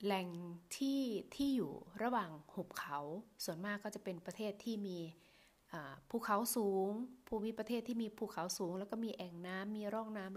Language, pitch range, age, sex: Thai, 175-220 Hz, 20-39, female